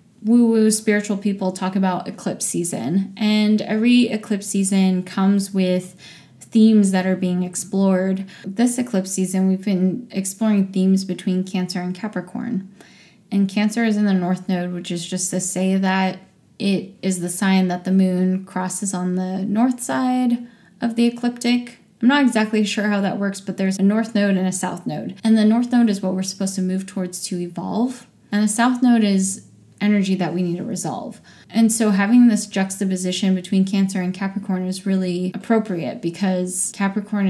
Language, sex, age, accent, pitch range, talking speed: English, female, 10-29, American, 185-215 Hz, 180 wpm